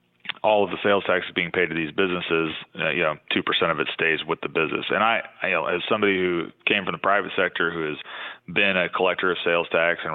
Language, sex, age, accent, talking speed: English, male, 30-49, American, 235 wpm